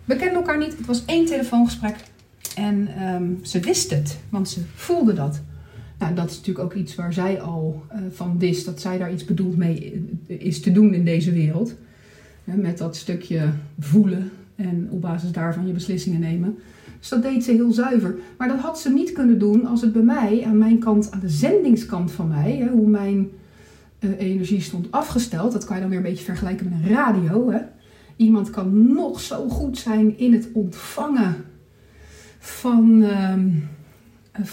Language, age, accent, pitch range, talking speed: Dutch, 40-59, Dutch, 180-235 Hz, 180 wpm